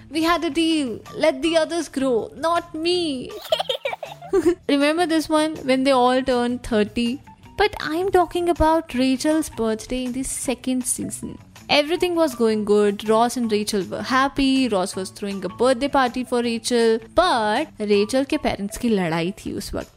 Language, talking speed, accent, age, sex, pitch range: Hindi, 160 wpm, native, 20-39, female, 235-325 Hz